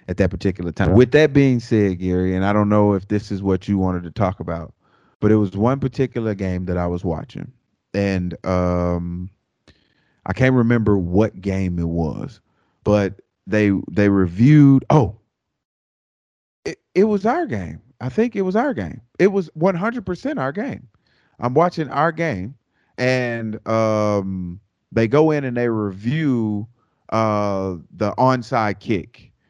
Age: 30-49